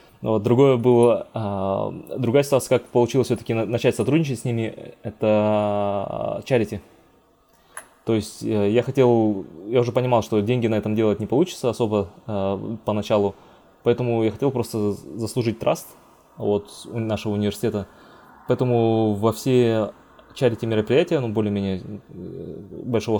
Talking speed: 115 wpm